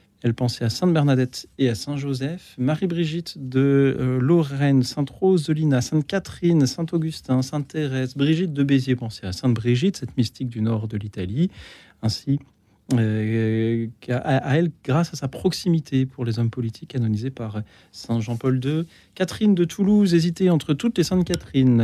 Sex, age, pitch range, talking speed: male, 40-59, 120-165 Hz, 150 wpm